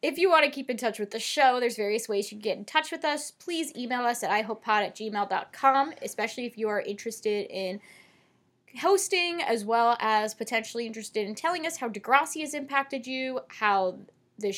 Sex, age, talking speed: female, 10-29, 200 wpm